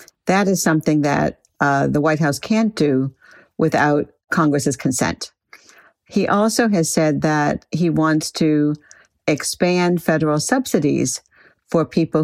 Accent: American